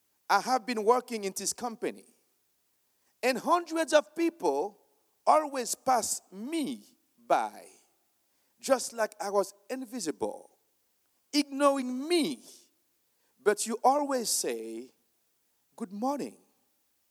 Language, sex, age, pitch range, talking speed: English, male, 50-69, 200-310 Hz, 100 wpm